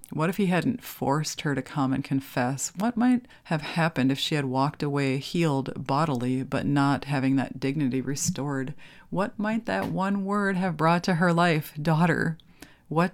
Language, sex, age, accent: English, female, 30-49, American